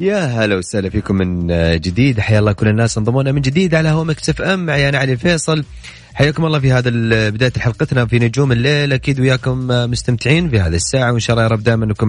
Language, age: Arabic, 30-49